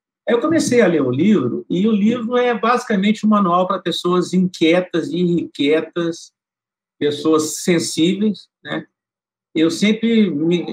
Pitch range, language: 160-240 Hz, Portuguese